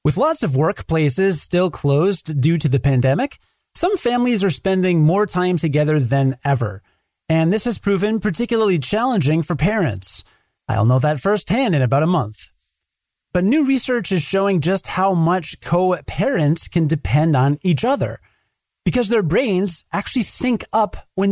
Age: 30-49